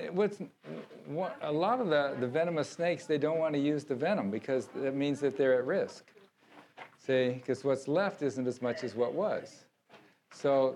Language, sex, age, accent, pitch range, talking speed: English, male, 50-69, American, 130-165 Hz, 180 wpm